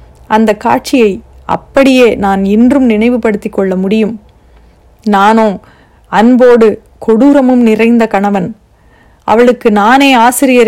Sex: female